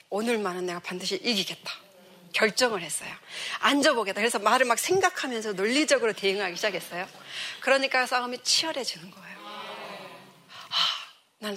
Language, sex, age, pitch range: Korean, female, 40-59, 190-265 Hz